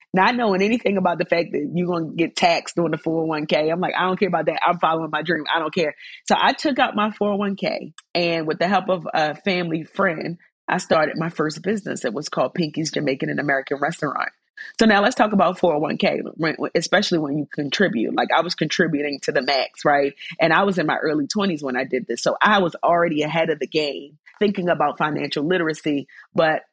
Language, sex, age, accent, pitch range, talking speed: English, female, 30-49, American, 155-195 Hz, 220 wpm